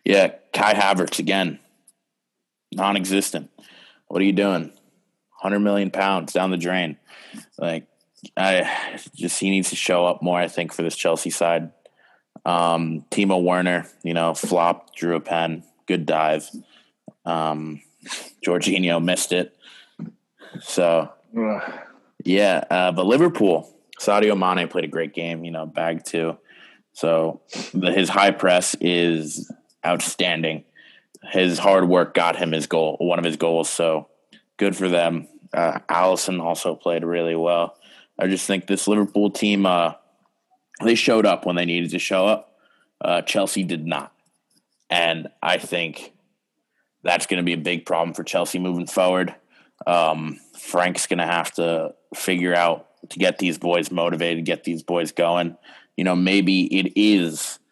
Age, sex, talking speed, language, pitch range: 20-39, male, 150 wpm, English, 85-95 Hz